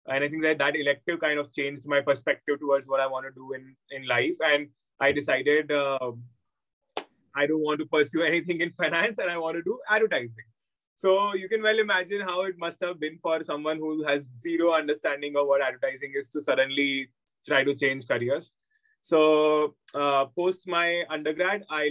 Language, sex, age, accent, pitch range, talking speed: English, male, 20-39, Indian, 135-155 Hz, 190 wpm